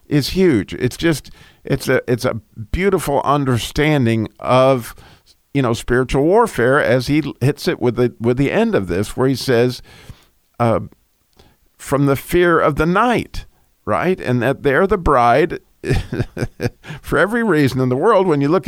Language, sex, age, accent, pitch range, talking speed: English, male, 50-69, American, 125-155 Hz, 165 wpm